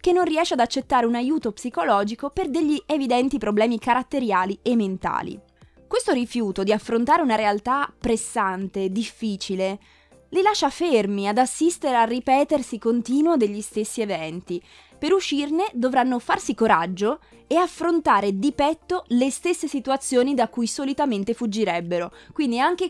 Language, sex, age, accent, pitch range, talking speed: Italian, female, 20-39, native, 215-295 Hz, 135 wpm